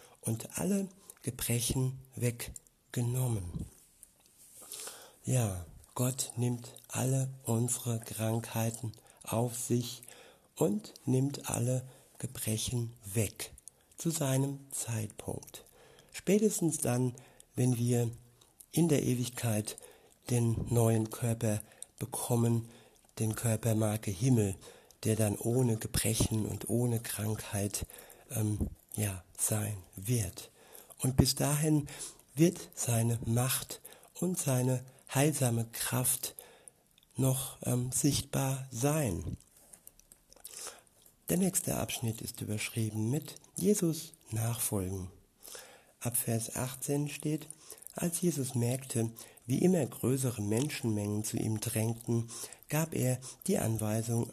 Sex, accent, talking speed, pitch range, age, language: male, German, 95 wpm, 110-135 Hz, 60-79, German